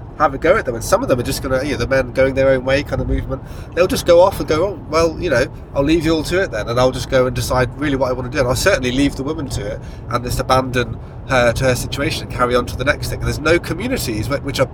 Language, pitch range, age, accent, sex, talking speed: English, 120-140 Hz, 30-49, British, male, 325 wpm